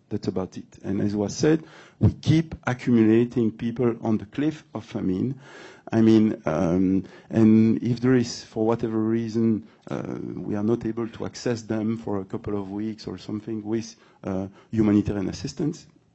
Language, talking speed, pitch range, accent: English, 165 wpm, 100-120 Hz, French